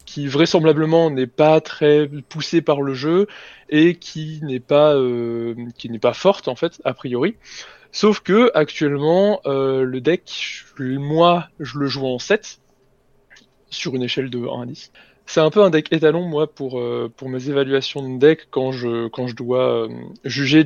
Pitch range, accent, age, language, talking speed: 130-160 Hz, French, 20-39, French, 180 wpm